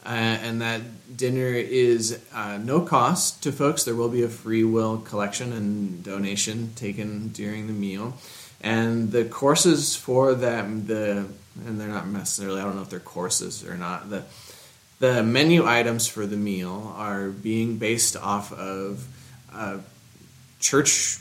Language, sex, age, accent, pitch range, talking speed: English, male, 20-39, American, 100-125 Hz, 155 wpm